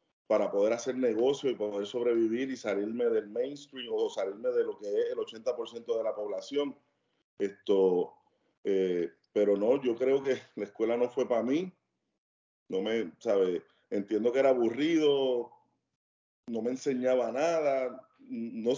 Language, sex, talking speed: Spanish, male, 150 wpm